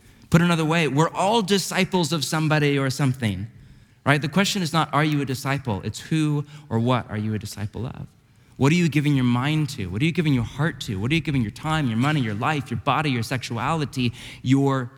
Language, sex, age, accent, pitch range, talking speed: English, male, 30-49, American, 120-155 Hz, 230 wpm